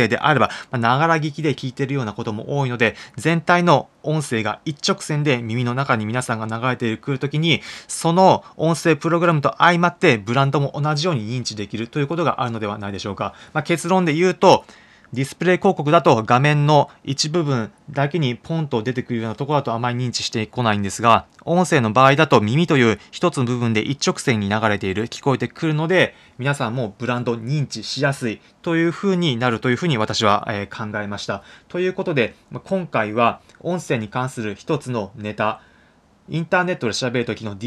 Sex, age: male, 20-39